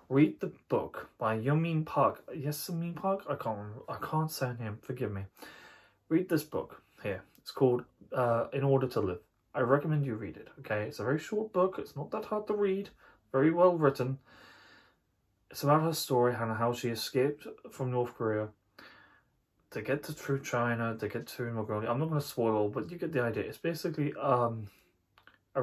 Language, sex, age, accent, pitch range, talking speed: English, male, 20-39, British, 120-170 Hz, 190 wpm